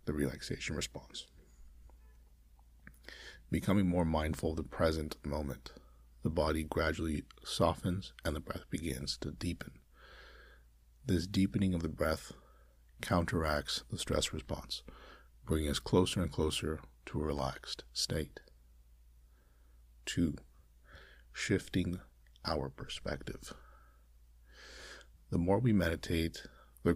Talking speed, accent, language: 105 wpm, American, English